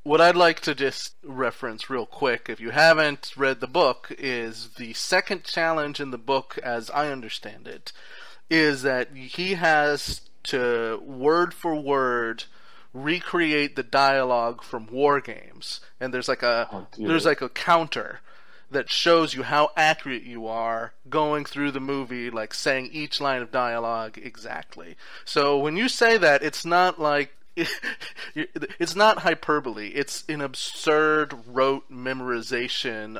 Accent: American